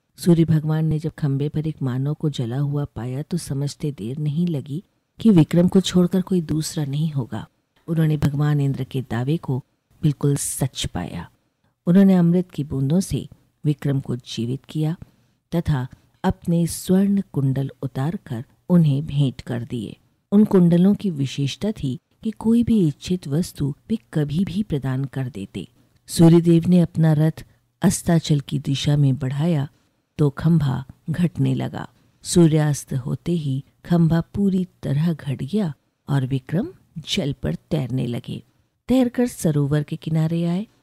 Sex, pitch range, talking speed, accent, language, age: female, 135-170 Hz, 150 wpm, native, Hindi, 50-69